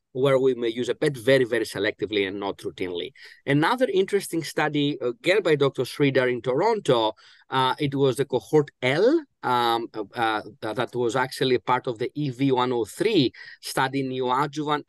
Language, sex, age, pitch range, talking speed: English, male, 30-49, 130-155 Hz, 155 wpm